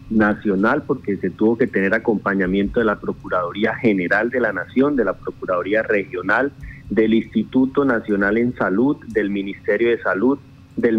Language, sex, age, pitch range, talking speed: Spanish, male, 30-49, 100-125 Hz, 145 wpm